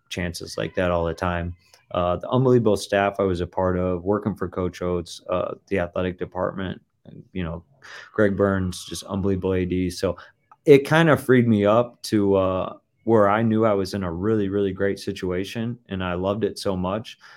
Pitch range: 95-115 Hz